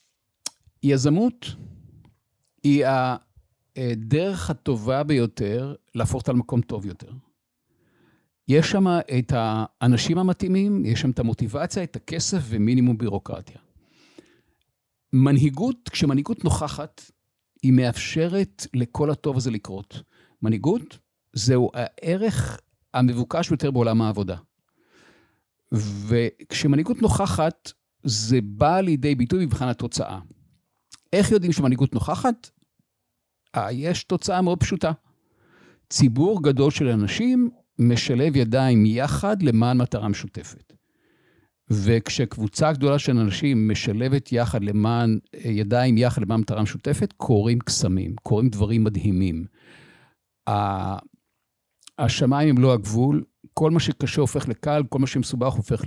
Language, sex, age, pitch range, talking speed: Hebrew, male, 50-69, 115-150 Hz, 105 wpm